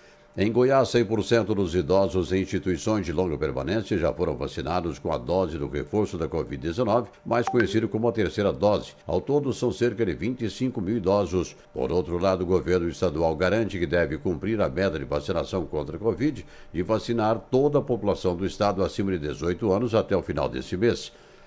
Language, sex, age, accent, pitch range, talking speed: Portuguese, male, 60-79, Brazilian, 90-115 Hz, 185 wpm